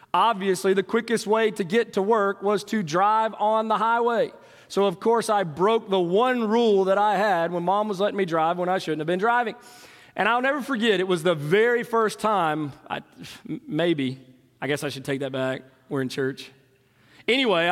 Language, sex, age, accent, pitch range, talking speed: English, male, 30-49, American, 165-225 Hz, 200 wpm